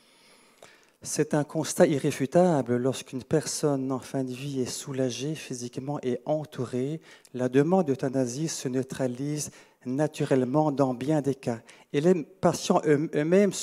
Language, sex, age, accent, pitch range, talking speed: French, male, 40-59, French, 135-170 Hz, 130 wpm